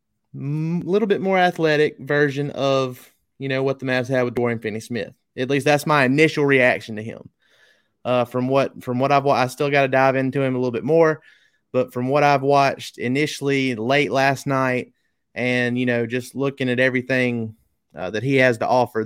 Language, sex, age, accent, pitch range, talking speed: English, male, 30-49, American, 115-140 Hz, 200 wpm